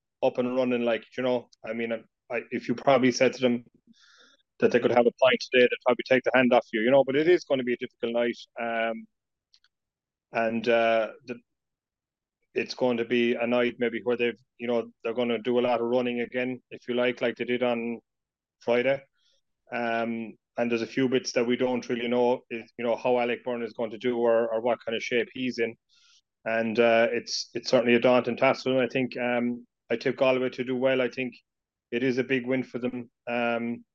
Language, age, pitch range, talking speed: English, 20-39, 120-125 Hz, 230 wpm